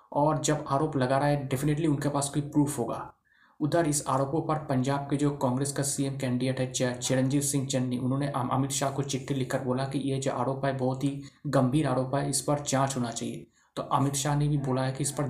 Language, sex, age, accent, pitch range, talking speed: Hindi, male, 20-39, native, 130-145 Hz, 230 wpm